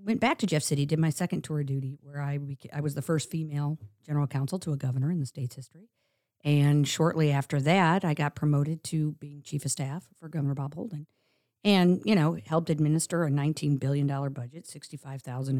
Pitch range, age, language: 140-175 Hz, 50-69, English